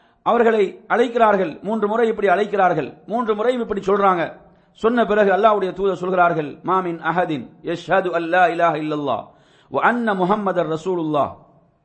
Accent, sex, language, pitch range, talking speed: Indian, male, English, 175-230 Hz, 170 wpm